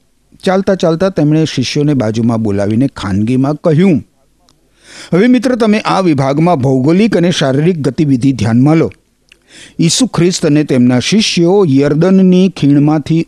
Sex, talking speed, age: male, 115 wpm, 50-69